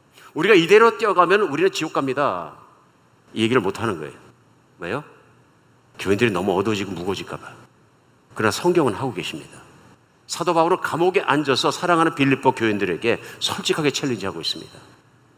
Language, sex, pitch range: Korean, male, 105-160 Hz